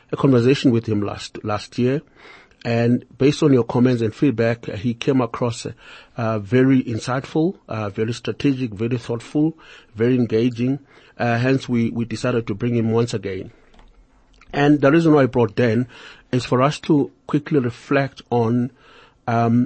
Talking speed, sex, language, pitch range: 160 wpm, male, English, 115-140 Hz